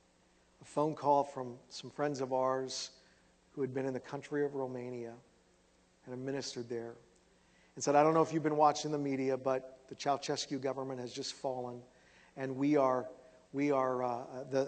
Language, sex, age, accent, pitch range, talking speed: English, male, 40-59, American, 130-155 Hz, 180 wpm